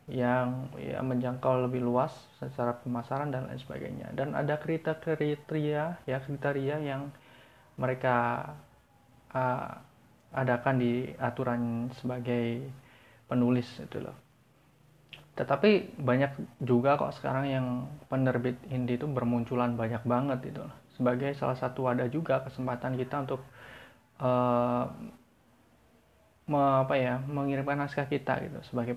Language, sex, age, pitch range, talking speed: Indonesian, male, 20-39, 125-140 Hz, 115 wpm